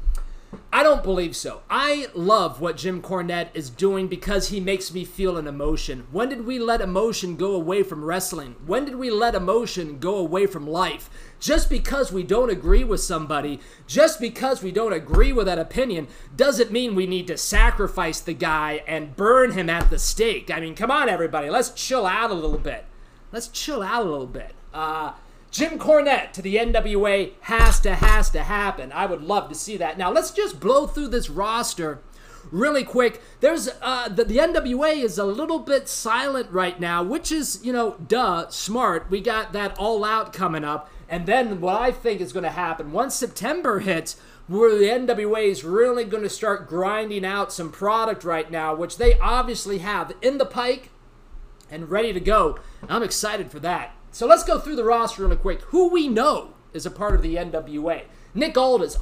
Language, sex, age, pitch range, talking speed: English, male, 30-49, 175-245 Hz, 195 wpm